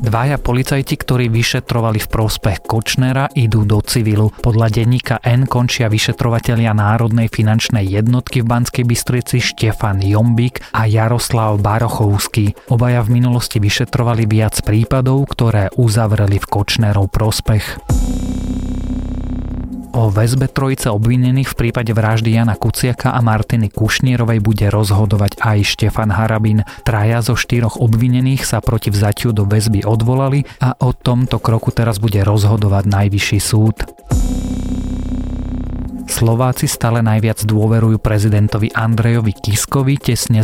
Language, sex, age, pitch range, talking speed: Slovak, male, 30-49, 105-120 Hz, 120 wpm